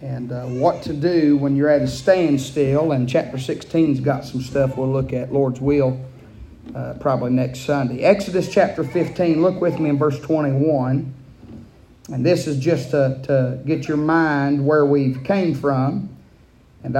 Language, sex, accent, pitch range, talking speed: English, male, American, 135-185 Hz, 170 wpm